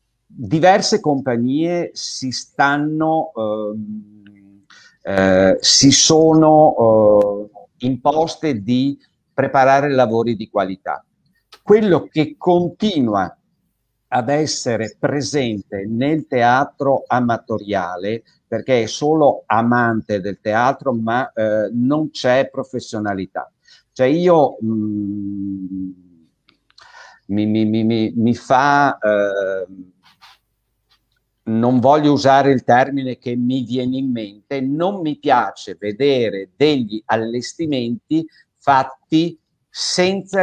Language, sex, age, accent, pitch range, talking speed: Italian, male, 50-69, native, 105-145 Hz, 90 wpm